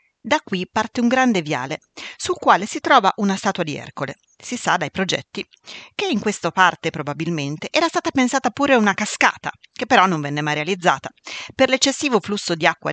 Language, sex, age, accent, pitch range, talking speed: Italian, female, 40-59, native, 165-260 Hz, 185 wpm